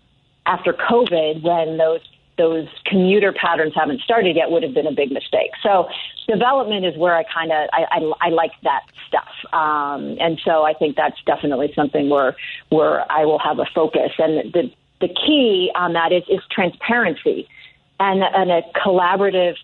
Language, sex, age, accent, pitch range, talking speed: English, female, 40-59, American, 160-205 Hz, 175 wpm